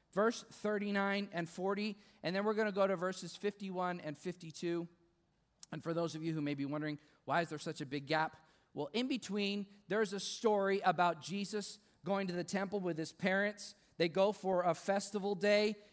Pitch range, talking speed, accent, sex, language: 160-215 Hz, 195 wpm, American, male, English